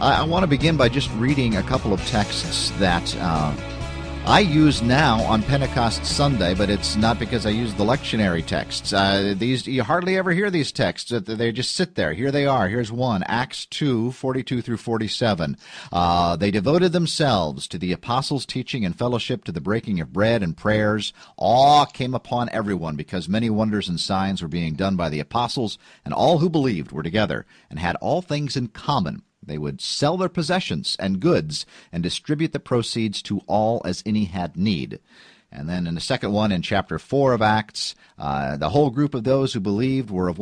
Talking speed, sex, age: 195 wpm, male, 50-69